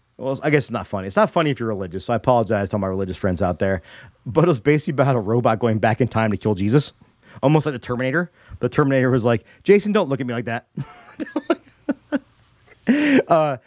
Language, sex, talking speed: English, male, 230 wpm